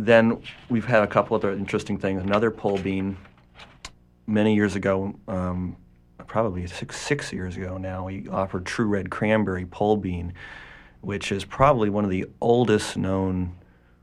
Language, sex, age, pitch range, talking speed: English, male, 40-59, 85-100 Hz, 155 wpm